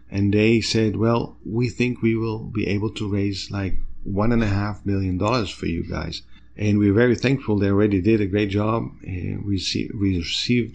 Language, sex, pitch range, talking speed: English, male, 95-115 Hz, 205 wpm